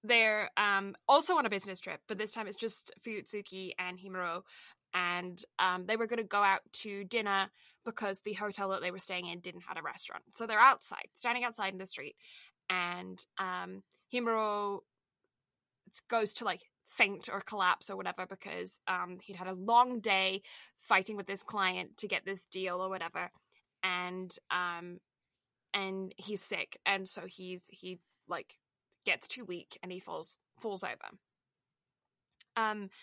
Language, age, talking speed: English, 20-39, 165 wpm